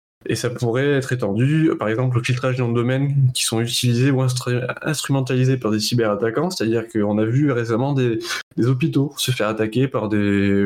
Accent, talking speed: French, 205 wpm